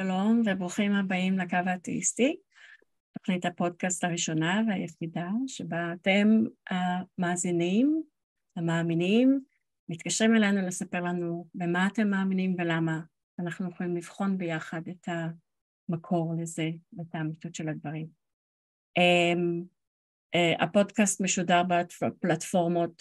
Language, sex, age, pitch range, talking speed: Hebrew, female, 30-49, 170-200 Hz, 90 wpm